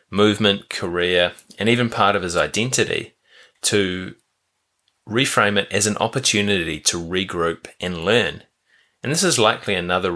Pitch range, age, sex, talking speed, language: 90-110 Hz, 20-39, male, 135 wpm, English